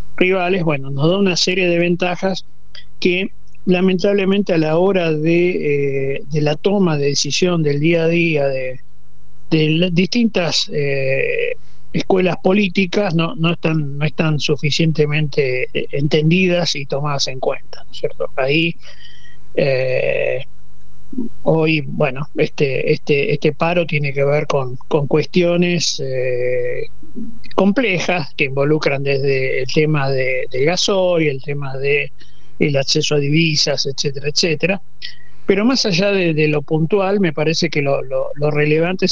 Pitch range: 150-180 Hz